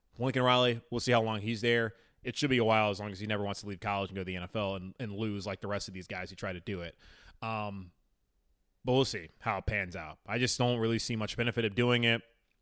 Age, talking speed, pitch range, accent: 20-39, 280 wpm, 95-120 Hz, American